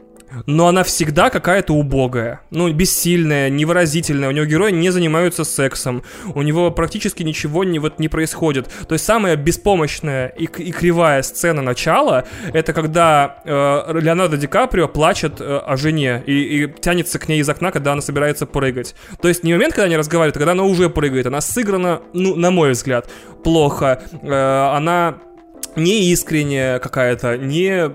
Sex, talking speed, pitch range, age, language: male, 165 wpm, 145-180 Hz, 20-39, Russian